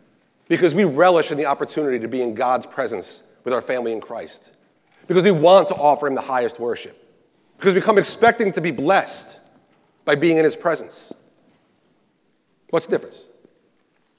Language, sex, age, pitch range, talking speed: English, male, 40-59, 155-230 Hz, 170 wpm